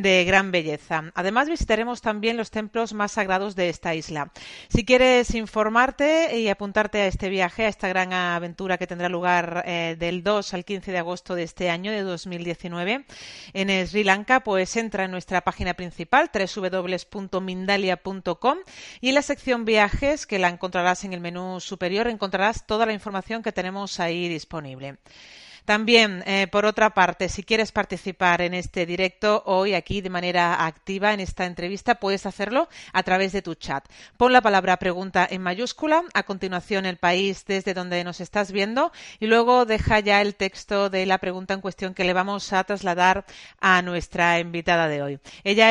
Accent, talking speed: Spanish, 175 wpm